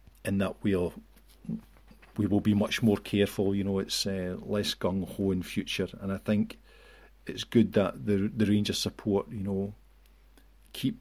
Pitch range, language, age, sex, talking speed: 95-110 Hz, English, 40-59, male, 170 wpm